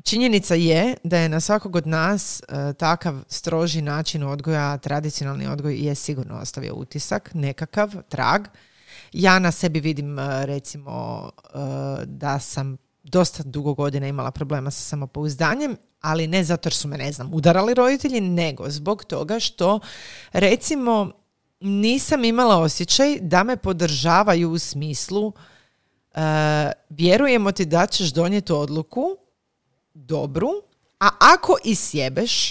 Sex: female